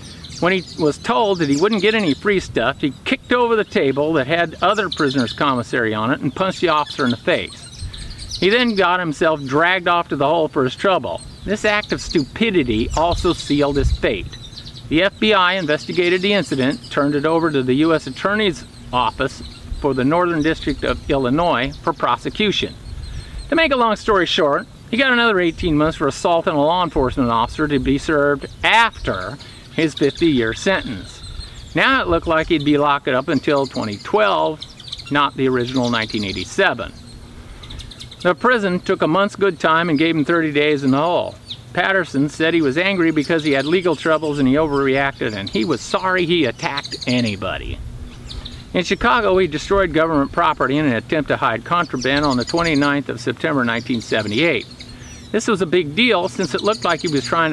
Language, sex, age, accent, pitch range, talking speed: English, male, 50-69, American, 135-180 Hz, 185 wpm